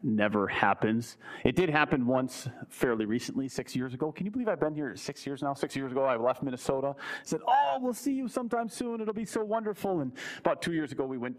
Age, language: 40-59, English